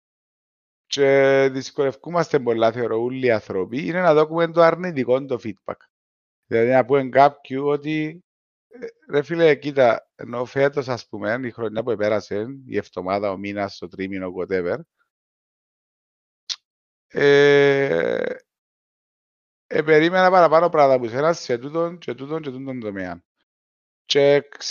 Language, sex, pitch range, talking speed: Greek, male, 130-170 Hz, 125 wpm